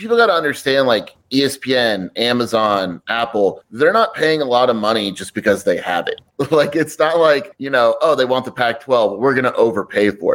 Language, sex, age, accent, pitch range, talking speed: English, male, 30-49, American, 105-130 Hz, 205 wpm